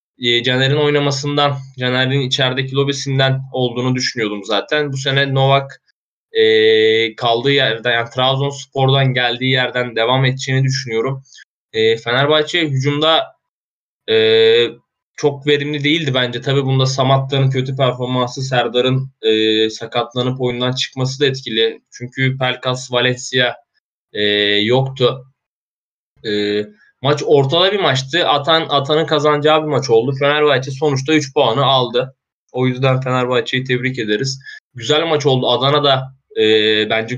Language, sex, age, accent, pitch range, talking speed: Turkish, male, 20-39, native, 120-140 Hz, 115 wpm